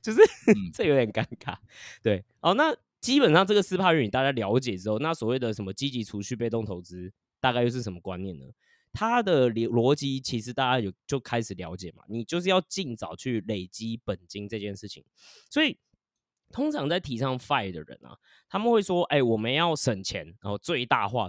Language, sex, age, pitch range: Chinese, male, 20-39, 100-140 Hz